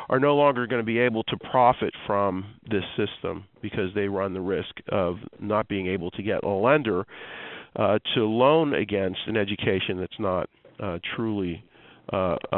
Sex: male